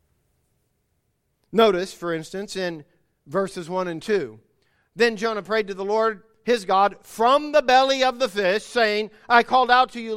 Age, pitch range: 50-69, 160-220 Hz